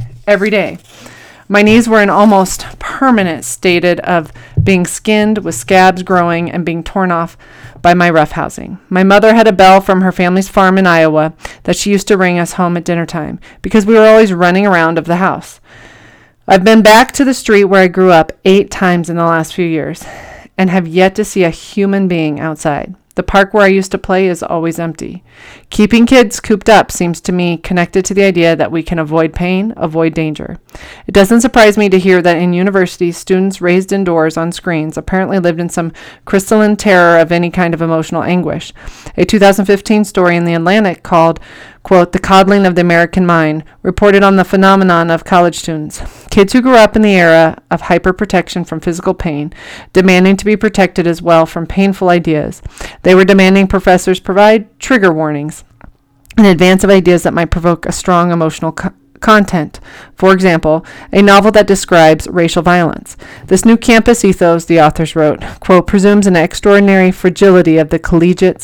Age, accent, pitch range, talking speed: 30-49, American, 165-195 Hz, 190 wpm